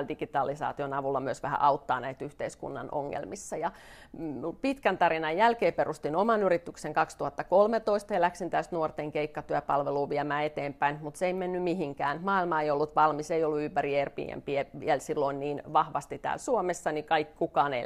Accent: native